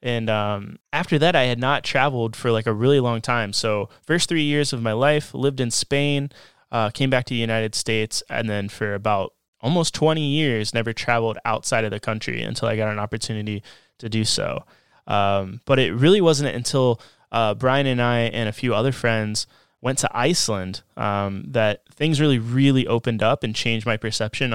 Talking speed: 200 wpm